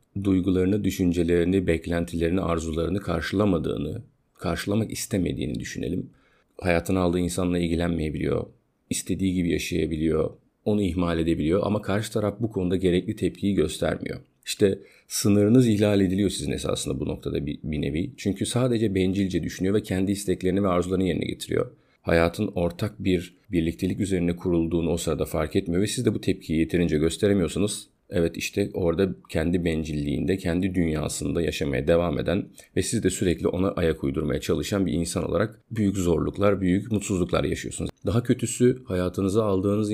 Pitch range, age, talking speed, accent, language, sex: 85-100 Hz, 40-59, 145 wpm, native, Turkish, male